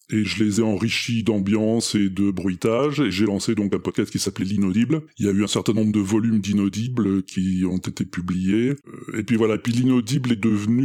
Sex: female